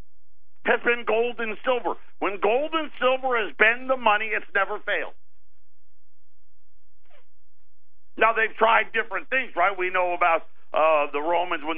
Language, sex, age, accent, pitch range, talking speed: English, male, 50-69, American, 145-185 Hz, 150 wpm